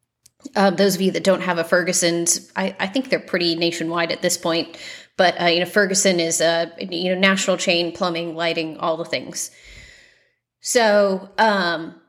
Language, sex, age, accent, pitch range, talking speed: English, female, 30-49, American, 180-225 Hz, 180 wpm